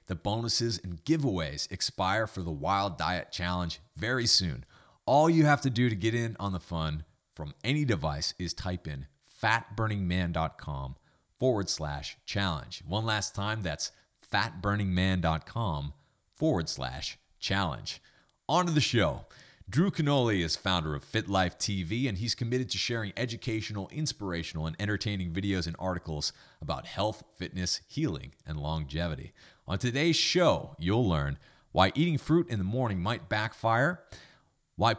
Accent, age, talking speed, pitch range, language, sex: American, 30-49, 145 wpm, 85-120 Hz, English, male